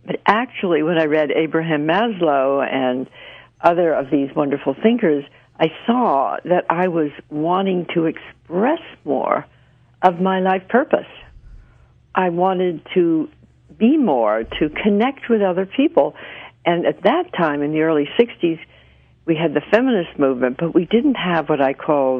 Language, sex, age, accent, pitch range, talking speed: English, female, 60-79, American, 140-180 Hz, 150 wpm